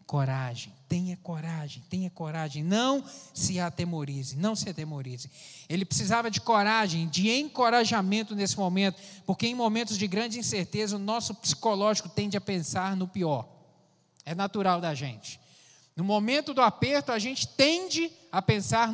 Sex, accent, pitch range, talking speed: male, Brazilian, 145-225 Hz, 145 wpm